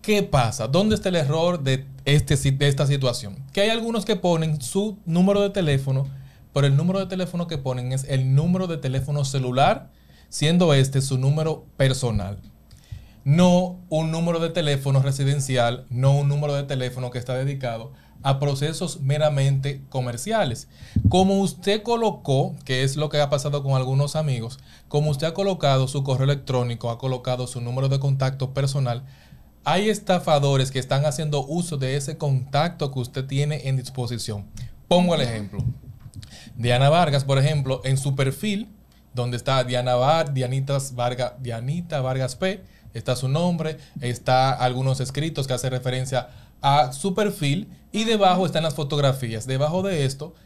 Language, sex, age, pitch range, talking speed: Spanish, male, 30-49, 130-160 Hz, 160 wpm